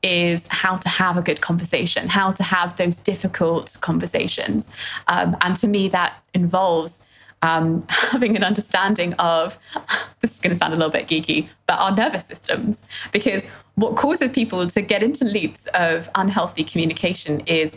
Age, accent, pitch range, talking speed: 20-39, British, 170-210 Hz, 160 wpm